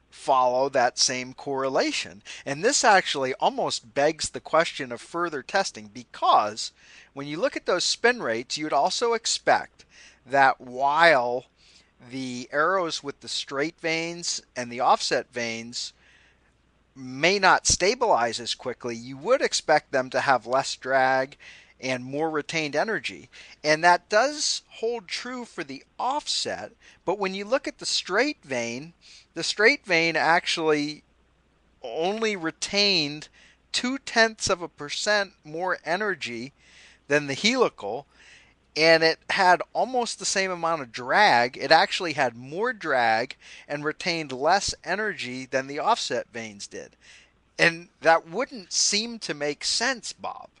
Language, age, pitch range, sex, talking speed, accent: English, 40-59, 130-185 Hz, male, 140 wpm, American